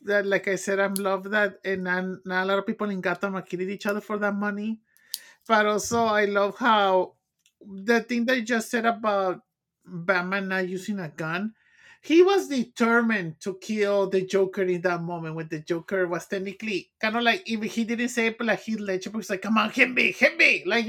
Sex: male